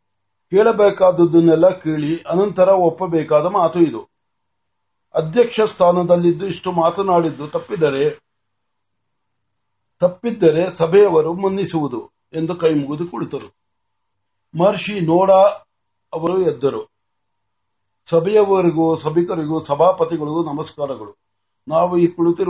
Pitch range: 150-185 Hz